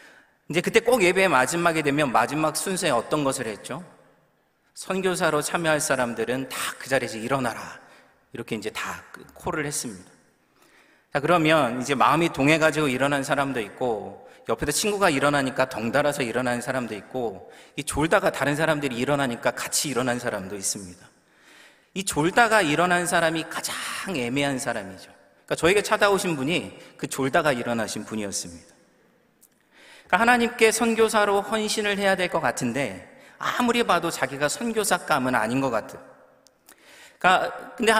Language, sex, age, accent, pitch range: Korean, male, 30-49, native, 125-175 Hz